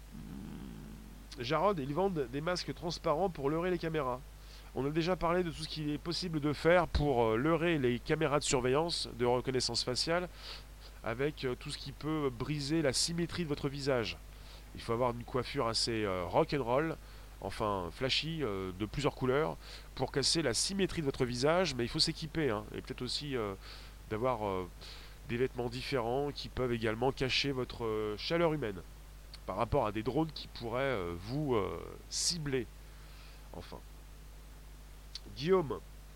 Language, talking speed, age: French, 155 wpm, 20-39